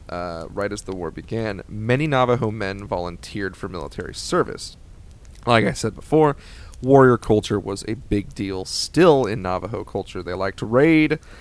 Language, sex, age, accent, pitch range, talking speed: English, male, 30-49, American, 90-120 Hz, 165 wpm